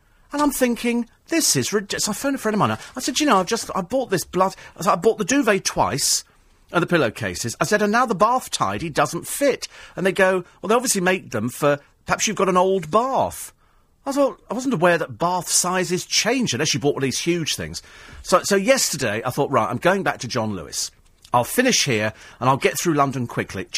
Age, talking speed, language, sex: 40-59, 235 wpm, English, male